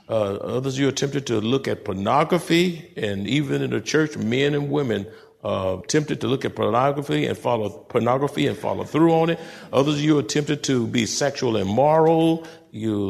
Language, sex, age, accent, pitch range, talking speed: English, male, 60-79, American, 125-155 Hz, 190 wpm